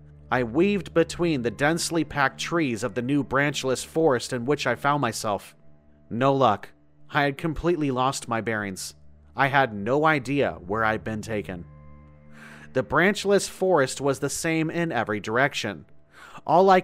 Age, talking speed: 30-49, 160 wpm